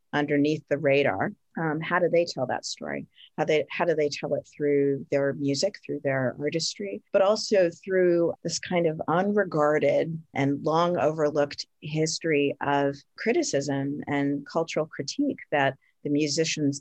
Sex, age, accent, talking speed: female, 40-59, American, 150 wpm